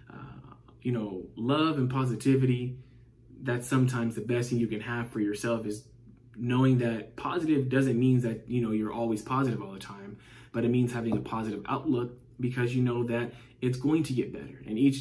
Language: English